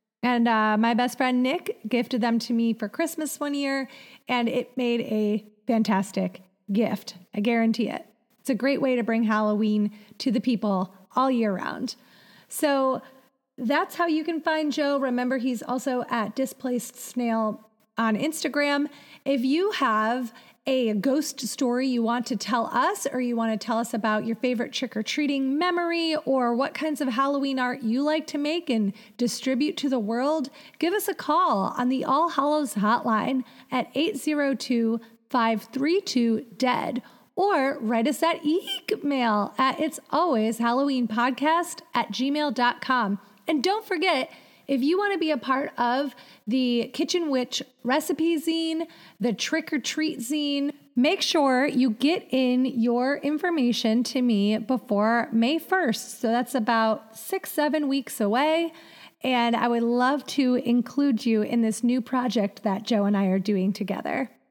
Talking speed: 155 wpm